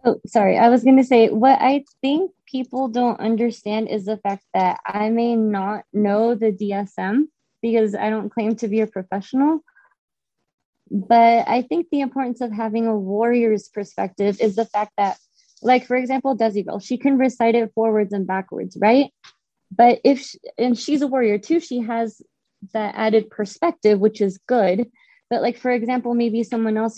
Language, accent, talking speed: English, American, 180 wpm